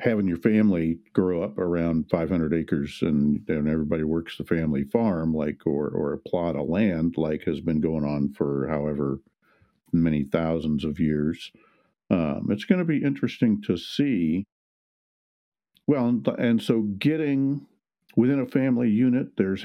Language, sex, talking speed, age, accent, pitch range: English, male, 160 wpm, 50-69, American, 80-115 Hz